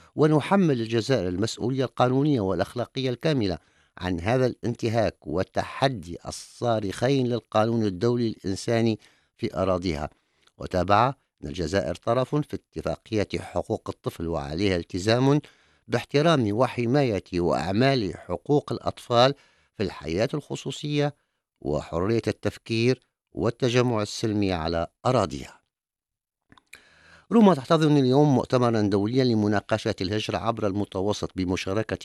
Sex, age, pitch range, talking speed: male, 50-69, 90-120 Hz, 95 wpm